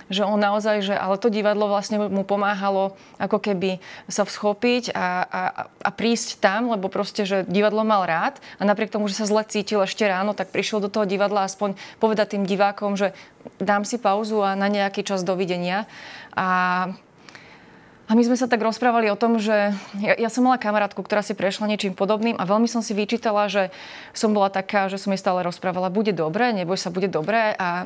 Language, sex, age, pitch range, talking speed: Slovak, female, 30-49, 195-215 Hz, 200 wpm